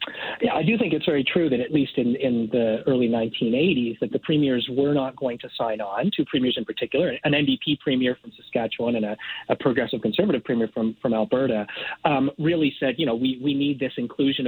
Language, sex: English, male